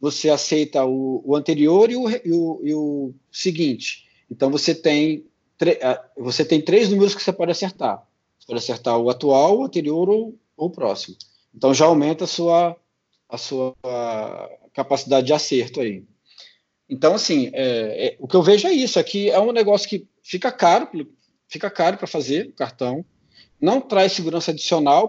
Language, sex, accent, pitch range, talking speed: Portuguese, male, Brazilian, 140-195 Hz, 150 wpm